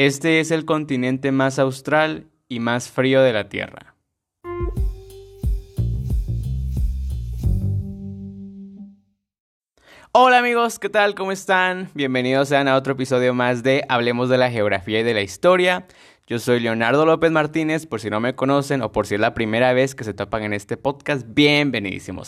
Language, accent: Spanish, Mexican